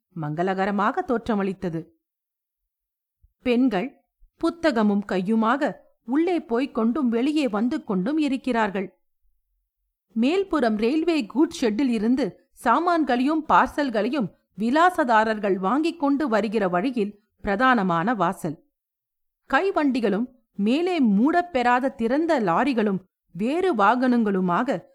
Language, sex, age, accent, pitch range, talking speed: Tamil, female, 50-69, native, 200-285 Hz, 75 wpm